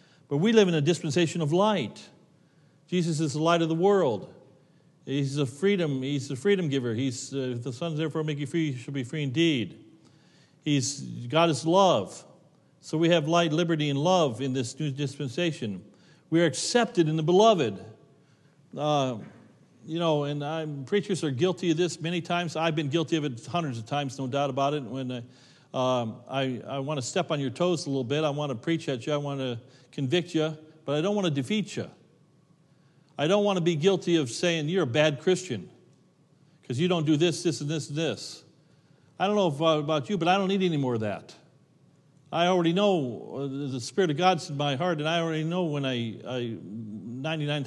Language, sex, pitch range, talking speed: English, male, 135-170 Hz, 210 wpm